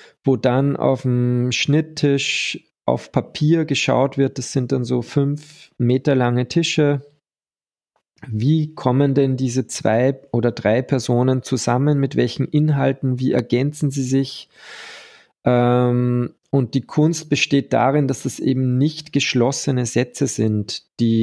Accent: German